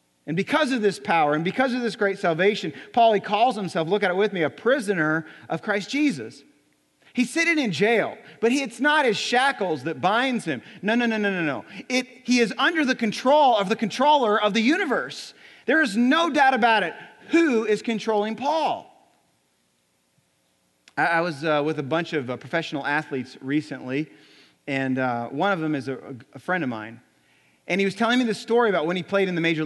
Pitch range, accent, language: 150-220 Hz, American, English